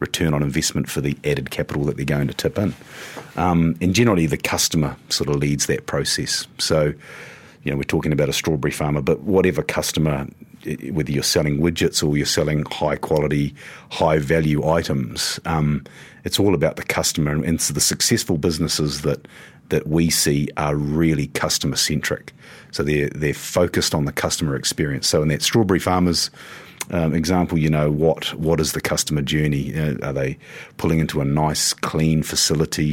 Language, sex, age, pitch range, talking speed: English, male, 40-59, 75-85 Hz, 175 wpm